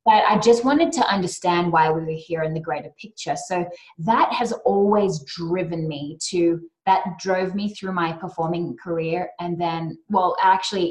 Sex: female